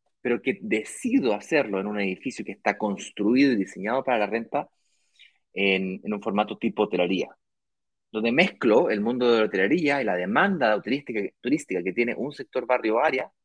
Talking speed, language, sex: 170 wpm, Spanish, male